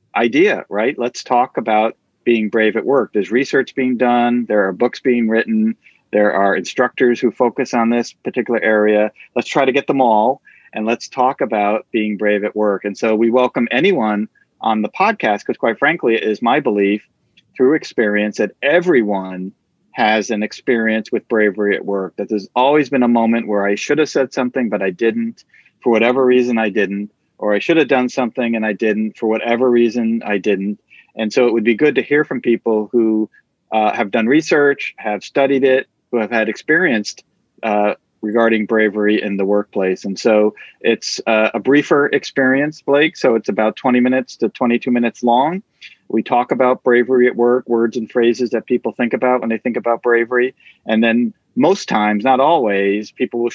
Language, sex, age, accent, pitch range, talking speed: English, male, 40-59, American, 105-125 Hz, 195 wpm